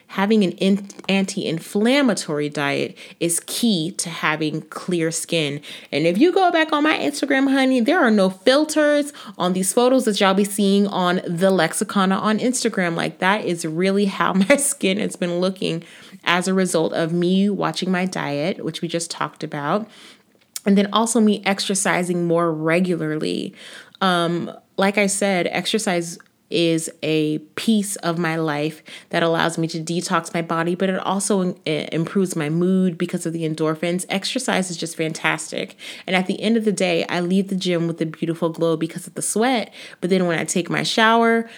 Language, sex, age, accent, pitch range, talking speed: English, female, 30-49, American, 165-205 Hz, 180 wpm